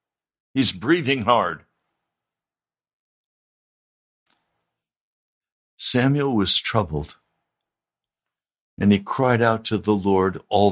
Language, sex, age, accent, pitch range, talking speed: English, male, 60-79, American, 100-140 Hz, 80 wpm